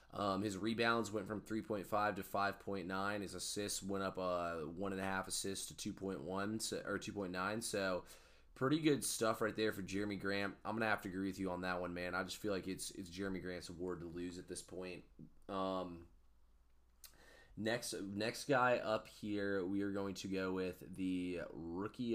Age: 20-39